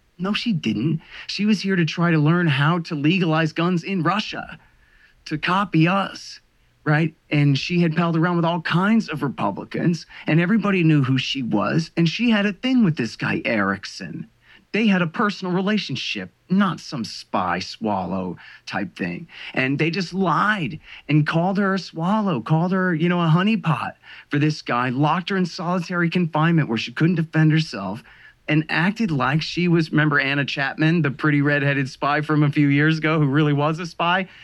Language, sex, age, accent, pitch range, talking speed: English, male, 30-49, American, 155-185 Hz, 185 wpm